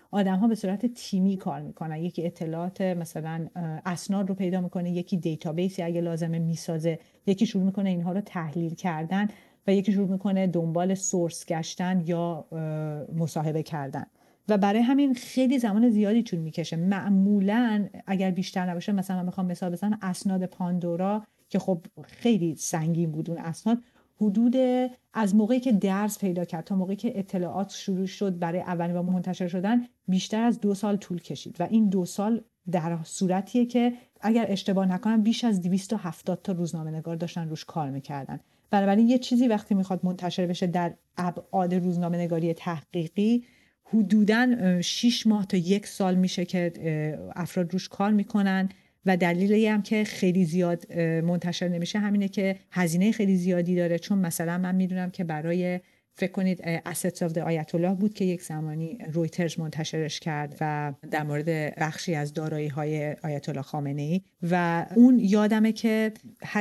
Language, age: Persian, 40-59